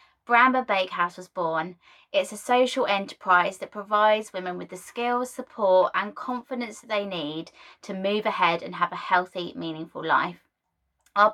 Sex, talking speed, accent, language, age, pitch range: female, 160 wpm, British, English, 20-39, 185-230 Hz